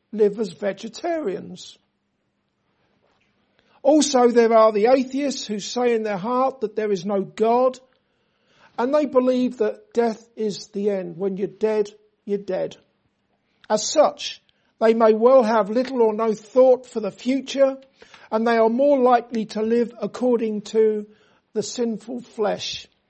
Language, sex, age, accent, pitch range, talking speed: English, male, 50-69, British, 210-245 Hz, 145 wpm